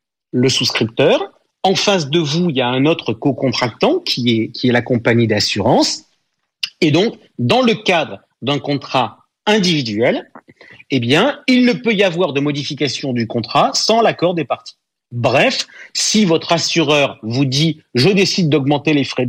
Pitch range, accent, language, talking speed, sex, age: 130-215 Hz, French, French, 165 wpm, male, 40-59